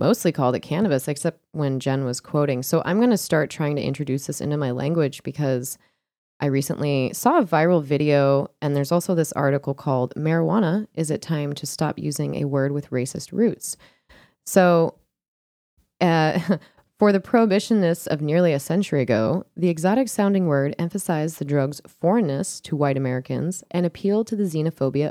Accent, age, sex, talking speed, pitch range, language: American, 20-39, female, 170 wpm, 140-175 Hz, English